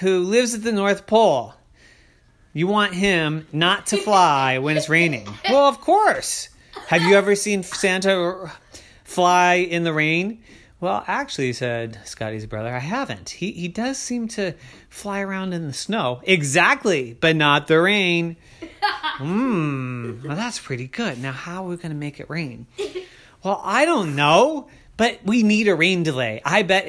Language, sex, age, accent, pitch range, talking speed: English, male, 30-49, American, 130-195 Hz, 165 wpm